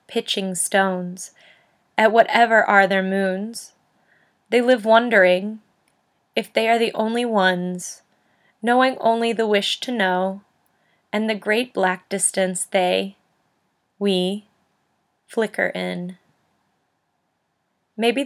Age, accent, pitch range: 20-39, American, 190-220 Hz